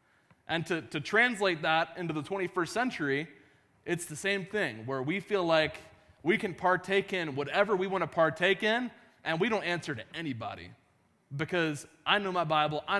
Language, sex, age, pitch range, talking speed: English, male, 20-39, 130-180 Hz, 175 wpm